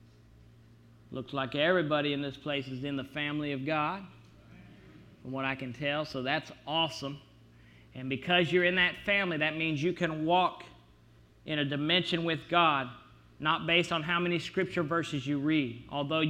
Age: 40-59